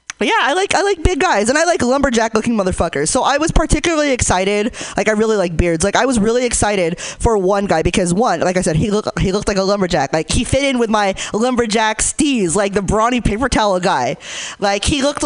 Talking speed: 240 wpm